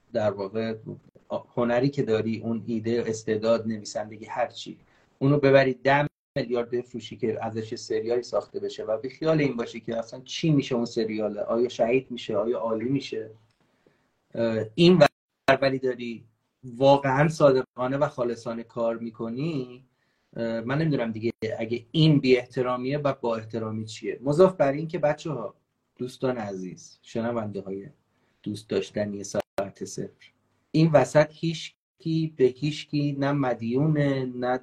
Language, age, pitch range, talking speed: Persian, 30-49, 115-140 Hz, 130 wpm